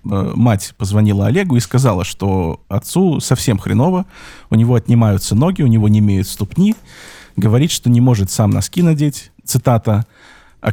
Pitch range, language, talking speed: 100-125 Hz, Russian, 150 wpm